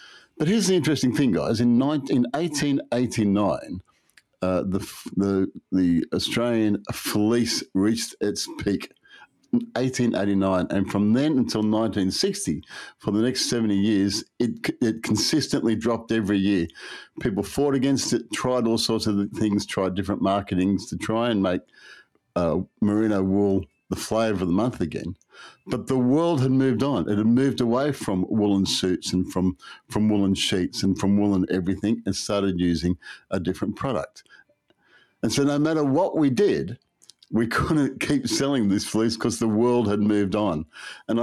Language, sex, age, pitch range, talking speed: English, male, 50-69, 95-120 Hz, 160 wpm